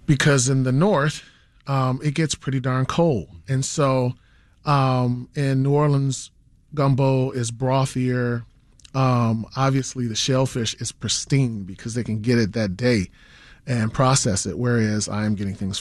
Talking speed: 150 wpm